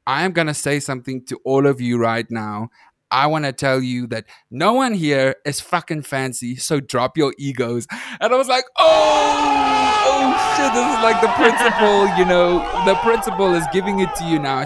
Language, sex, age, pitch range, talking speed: English, male, 20-39, 135-175 Hz, 205 wpm